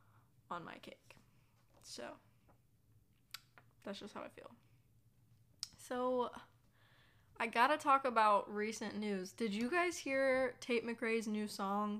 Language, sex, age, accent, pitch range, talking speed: English, female, 10-29, American, 185-225 Hz, 120 wpm